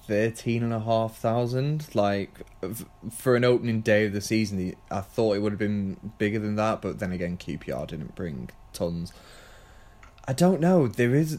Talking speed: 180 wpm